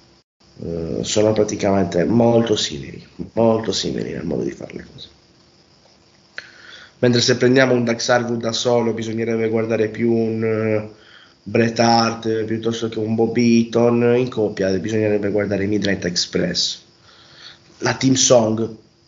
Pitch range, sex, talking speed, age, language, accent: 105-120 Hz, male, 130 wpm, 30-49, Italian, native